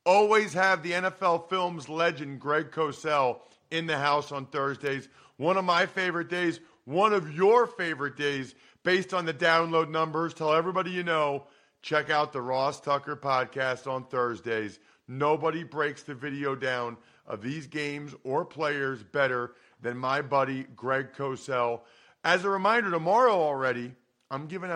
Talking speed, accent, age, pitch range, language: 155 wpm, American, 40-59, 135-170 Hz, English